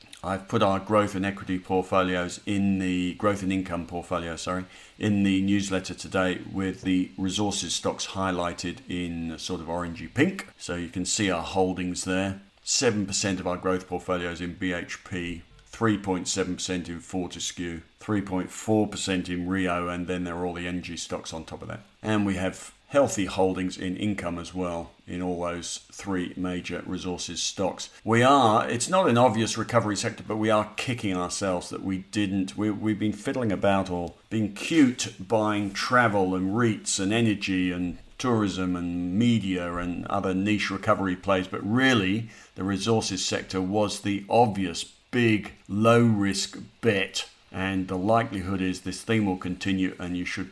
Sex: male